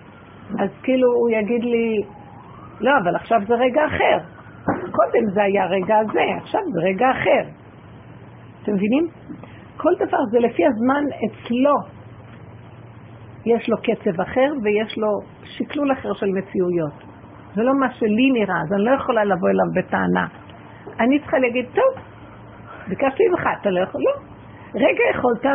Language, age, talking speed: Hebrew, 50-69, 145 wpm